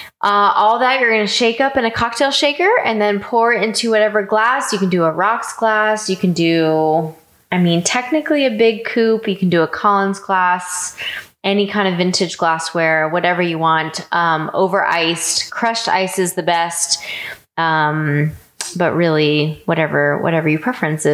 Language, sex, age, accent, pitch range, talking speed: English, female, 20-39, American, 165-210 Hz, 175 wpm